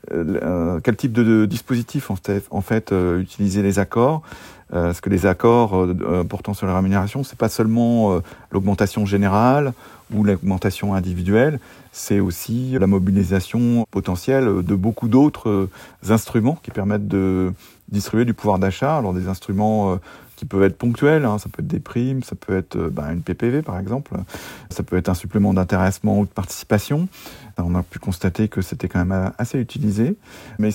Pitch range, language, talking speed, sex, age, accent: 95-115 Hz, French, 180 wpm, male, 40-59, French